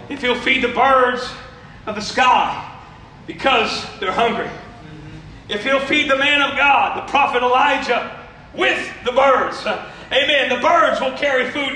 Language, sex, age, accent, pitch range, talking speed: English, male, 40-59, American, 265-330 Hz, 155 wpm